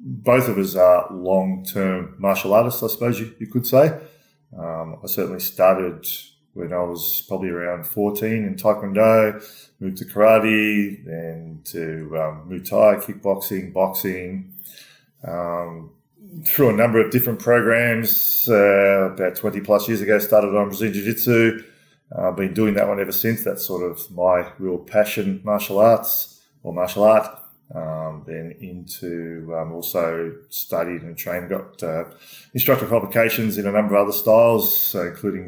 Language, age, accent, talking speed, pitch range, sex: English, 20-39, Australian, 150 wpm, 90-110 Hz, male